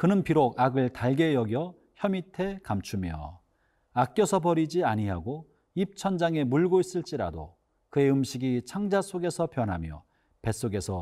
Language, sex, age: Korean, male, 40-59